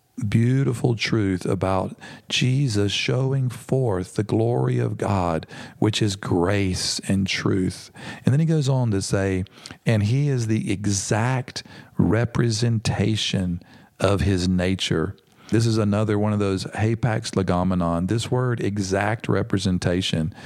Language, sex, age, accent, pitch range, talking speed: English, male, 50-69, American, 95-120 Hz, 125 wpm